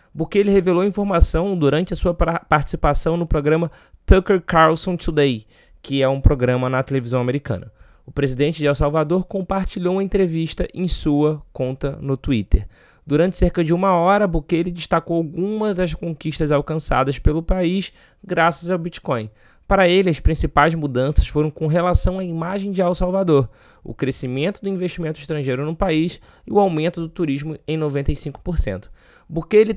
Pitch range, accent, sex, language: 145-180 Hz, Brazilian, male, Portuguese